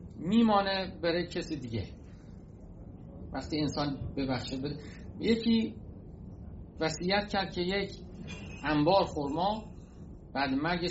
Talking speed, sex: 95 wpm, male